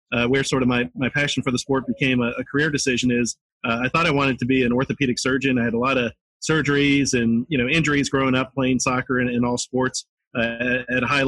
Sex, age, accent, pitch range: male, 30-49, American, 125-140 Hz